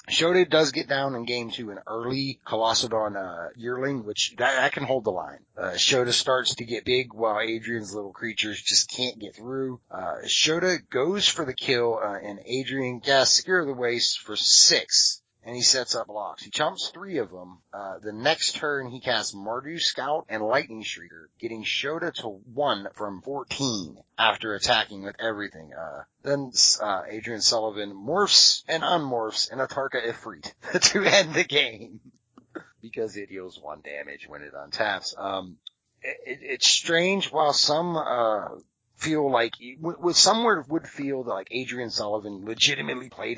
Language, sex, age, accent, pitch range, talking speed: English, male, 30-49, American, 105-140 Hz, 170 wpm